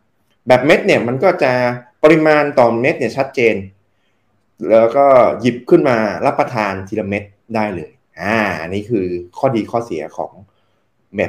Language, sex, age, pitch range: Thai, male, 20-39, 105-135 Hz